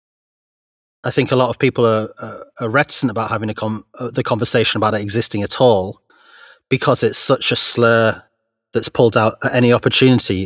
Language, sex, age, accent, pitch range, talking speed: English, male, 30-49, British, 100-120 Hz, 170 wpm